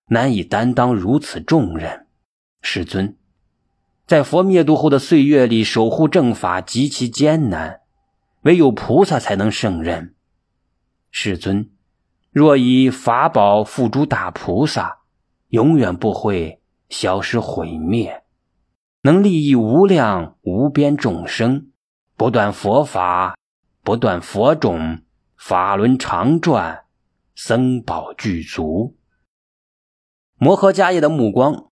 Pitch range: 95-150 Hz